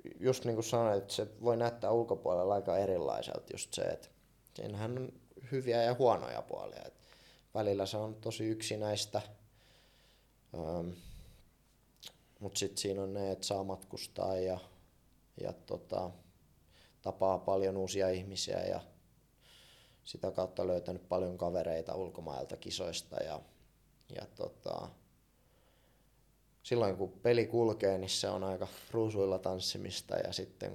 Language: Finnish